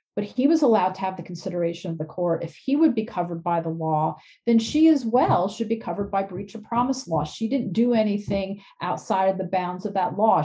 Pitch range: 175-225 Hz